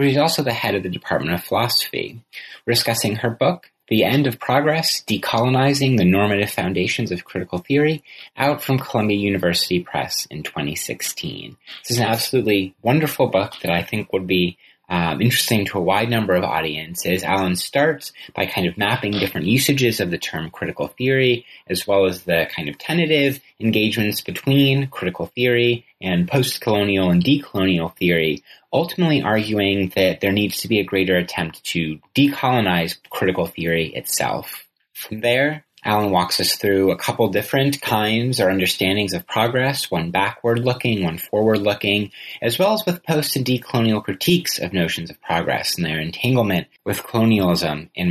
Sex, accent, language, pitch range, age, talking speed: male, American, English, 95-130 Hz, 30-49, 160 wpm